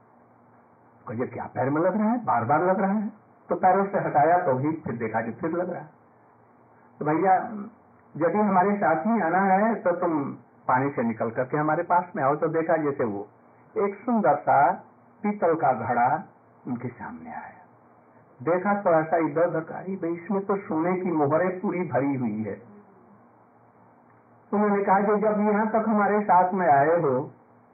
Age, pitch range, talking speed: 60-79, 145-210 Hz, 180 wpm